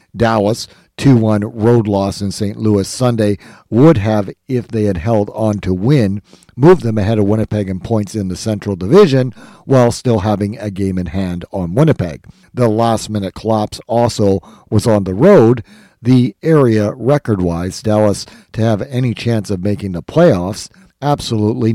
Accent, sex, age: American, male, 50-69